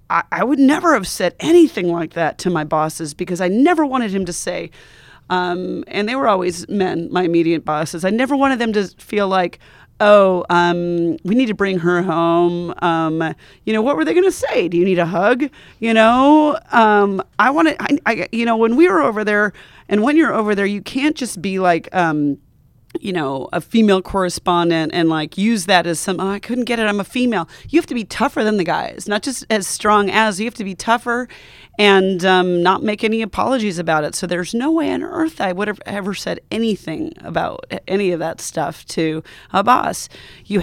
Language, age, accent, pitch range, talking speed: English, 30-49, American, 170-225 Hz, 215 wpm